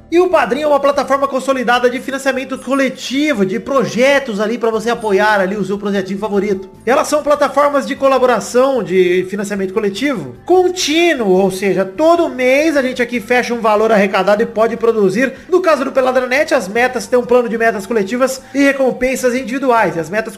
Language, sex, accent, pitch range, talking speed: Portuguese, male, Brazilian, 225-280 Hz, 185 wpm